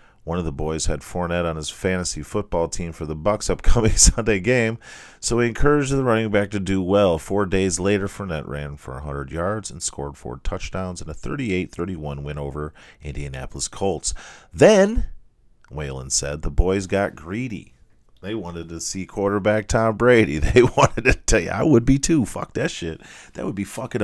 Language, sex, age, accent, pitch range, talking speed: English, male, 40-59, American, 80-105 Hz, 185 wpm